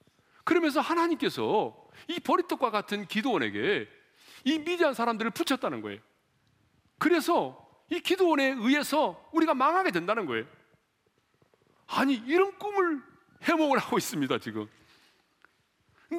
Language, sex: Korean, male